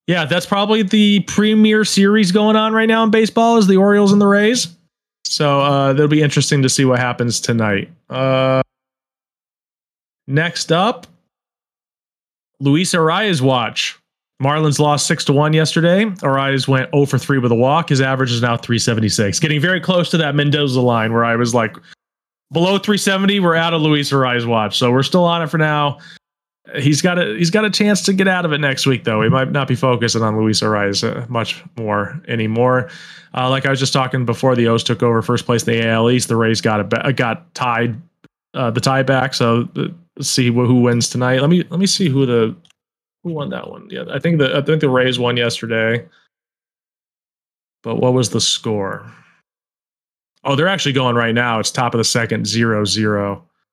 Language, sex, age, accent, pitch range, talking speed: English, male, 30-49, American, 120-170 Hz, 195 wpm